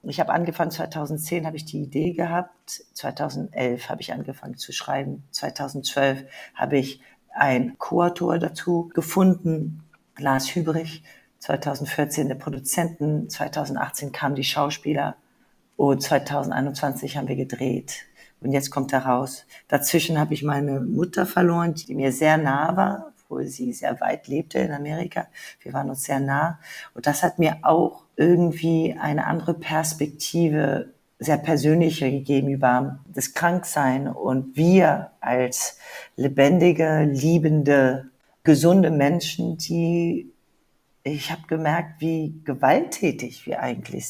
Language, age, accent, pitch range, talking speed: German, 40-59, German, 140-165 Hz, 130 wpm